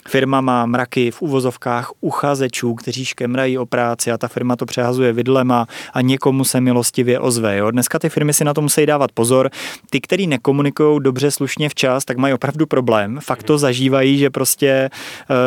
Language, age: Czech, 20-39